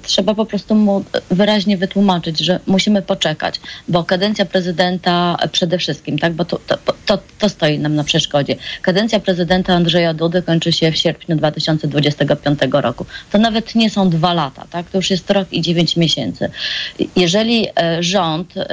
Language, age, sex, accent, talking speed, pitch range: Polish, 30-49, female, native, 155 wpm, 165-195 Hz